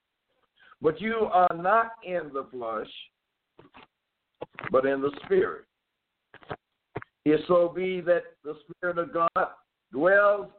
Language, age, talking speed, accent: English, 60-79, 115 wpm, American